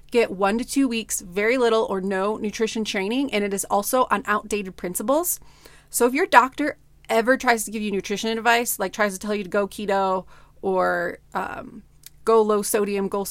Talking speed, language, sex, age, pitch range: 195 wpm, English, female, 30-49, 205-245 Hz